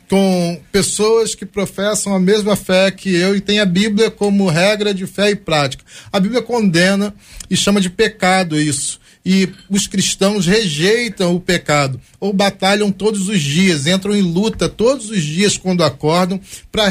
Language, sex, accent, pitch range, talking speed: Portuguese, male, Brazilian, 175-210 Hz, 165 wpm